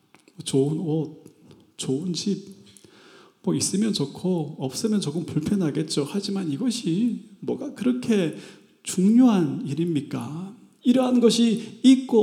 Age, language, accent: 30-49, Korean, native